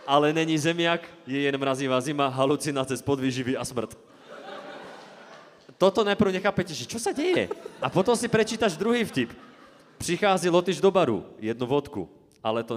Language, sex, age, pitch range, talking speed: Slovak, male, 30-49, 125-170 Hz, 155 wpm